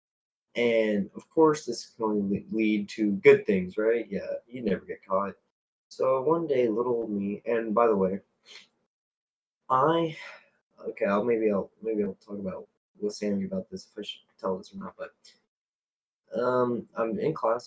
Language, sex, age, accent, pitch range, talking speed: English, male, 20-39, American, 100-150 Hz, 165 wpm